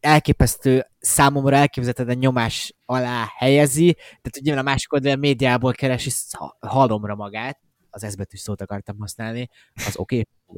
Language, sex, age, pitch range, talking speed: Hungarian, male, 20-39, 115-150 Hz, 145 wpm